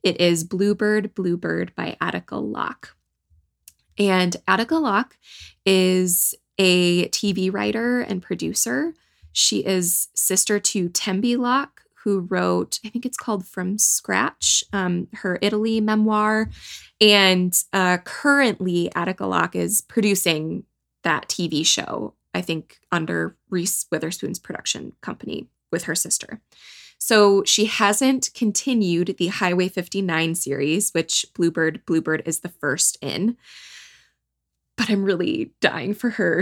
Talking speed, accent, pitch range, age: 125 wpm, American, 175-210 Hz, 20-39